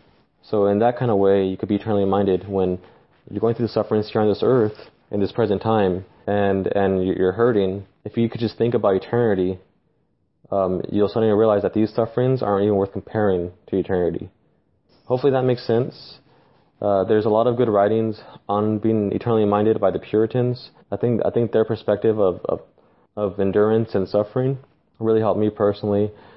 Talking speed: 190 wpm